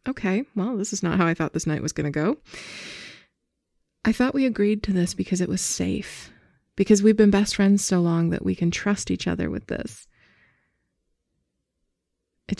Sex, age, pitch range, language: female, 20-39, 160-210 Hz, English